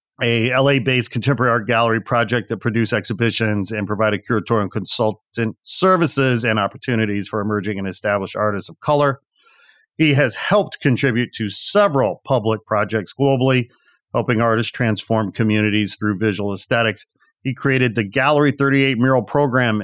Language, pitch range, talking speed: English, 105-130 Hz, 140 wpm